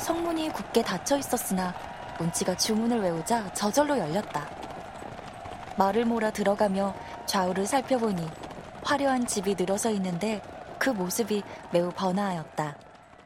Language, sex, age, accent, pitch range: Korean, female, 20-39, native, 185-245 Hz